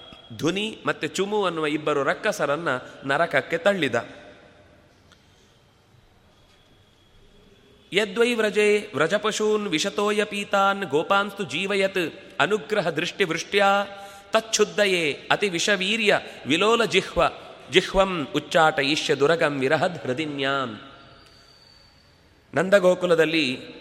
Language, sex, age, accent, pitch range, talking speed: Kannada, male, 30-49, native, 145-205 Hz, 70 wpm